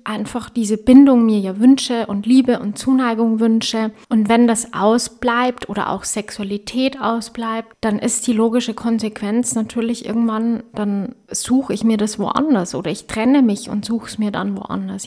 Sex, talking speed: female, 165 wpm